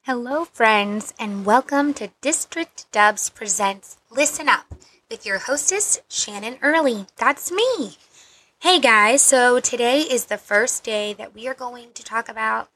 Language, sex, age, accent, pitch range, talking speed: English, female, 20-39, American, 210-255 Hz, 150 wpm